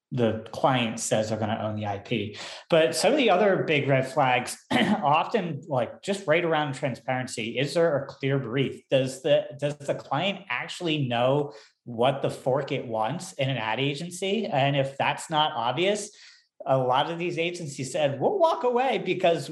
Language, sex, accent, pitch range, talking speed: English, male, American, 120-160 Hz, 175 wpm